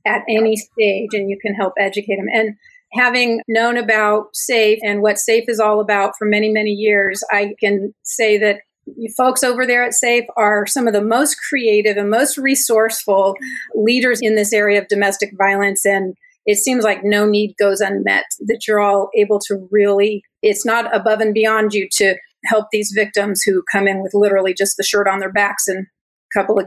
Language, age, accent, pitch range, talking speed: English, 40-59, American, 205-230 Hz, 200 wpm